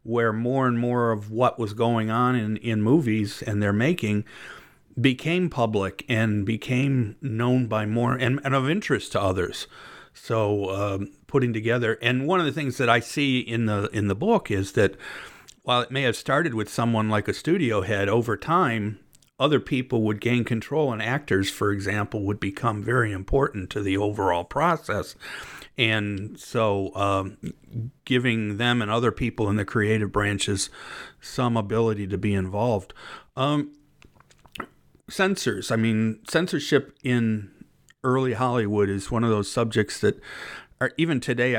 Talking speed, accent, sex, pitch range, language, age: 160 wpm, American, male, 105-125 Hz, English, 50-69